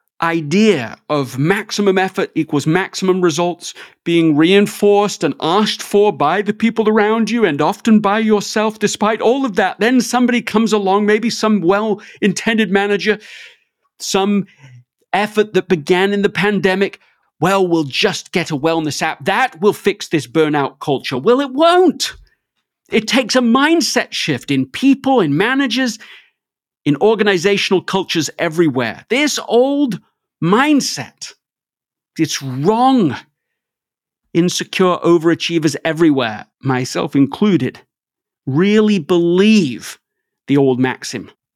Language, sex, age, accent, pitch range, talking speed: English, male, 50-69, British, 155-210 Hz, 125 wpm